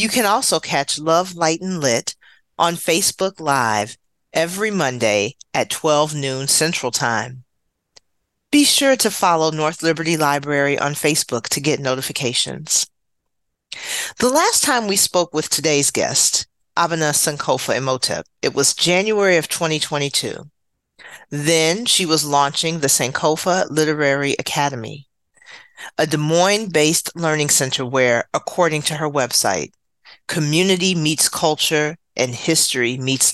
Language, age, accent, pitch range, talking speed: English, 40-59, American, 135-170 Hz, 125 wpm